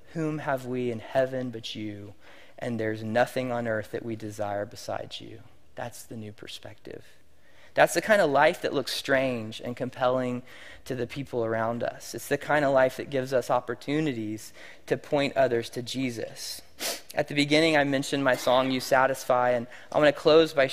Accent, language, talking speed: American, English, 190 wpm